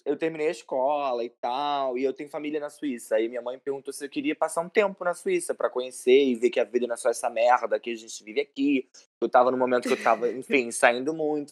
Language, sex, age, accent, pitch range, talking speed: Portuguese, male, 20-39, Brazilian, 120-175 Hz, 265 wpm